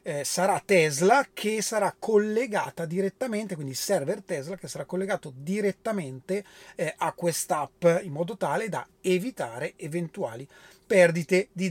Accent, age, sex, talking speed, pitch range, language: native, 30-49, male, 130 wpm, 175-230 Hz, Italian